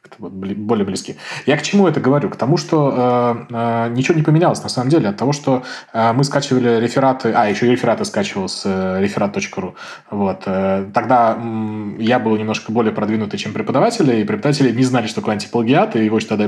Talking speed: 185 wpm